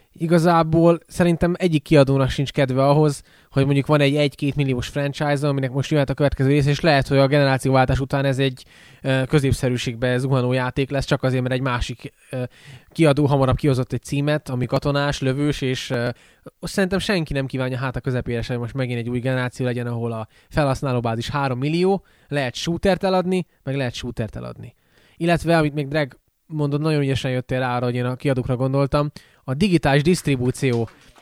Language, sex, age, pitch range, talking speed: Hungarian, male, 20-39, 130-155 Hz, 175 wpm